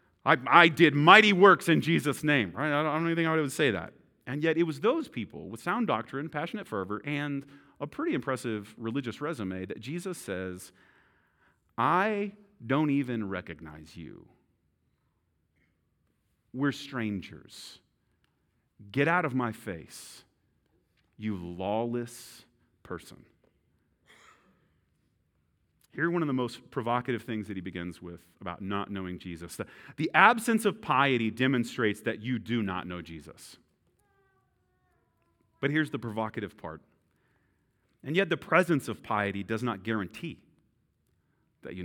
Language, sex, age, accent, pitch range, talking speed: English, male, 40-59, American, 100-160 Hz, 135 wpm